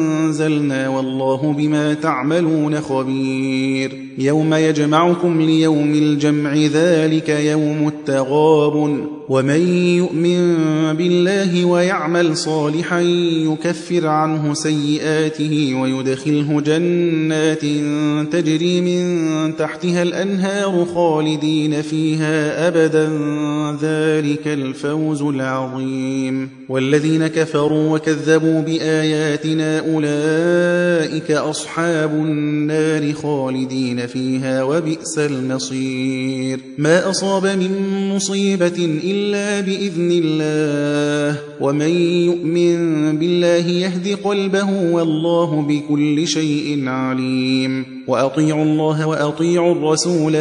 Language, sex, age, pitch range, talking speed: Persian, male, 30-49, 145-165 Hz, 75 wpm